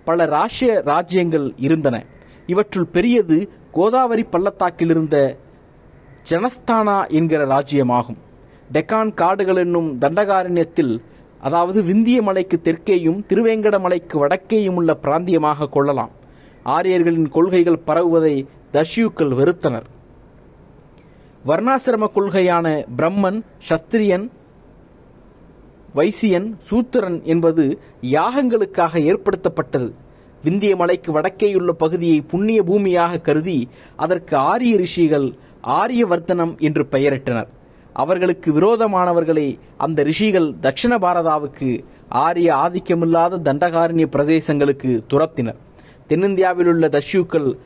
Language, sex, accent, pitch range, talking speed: Tamil, male, native, 150-190 Hz, 85 wpm